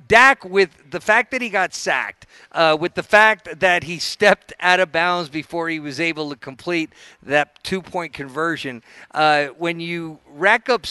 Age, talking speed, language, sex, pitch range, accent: 50-69, 175 wpm, English, male, 160-200 Hz, American